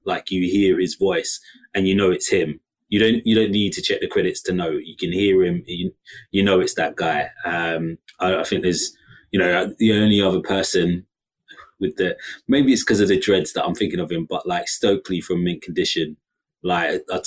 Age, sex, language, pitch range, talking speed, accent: 20-39, male, English, 90-105 Hz, 220 wpm, British